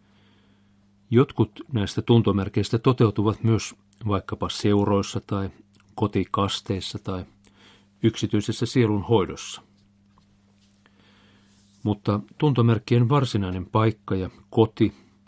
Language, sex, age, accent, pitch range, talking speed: Finnish, male, 50-69, native, 100-110 Hz, 75 wpm